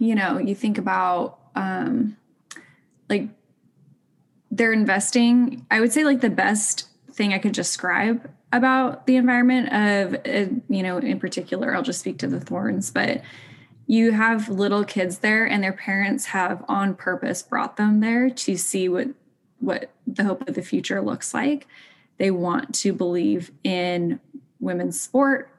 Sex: female